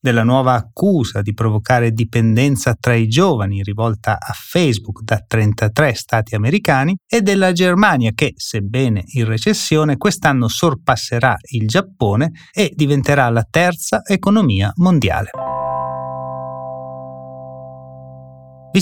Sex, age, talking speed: male, 30-49, 110 wpm